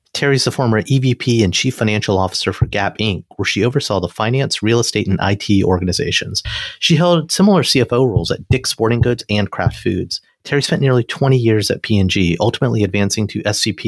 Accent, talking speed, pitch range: American, 195 wpm, 100-135 Hz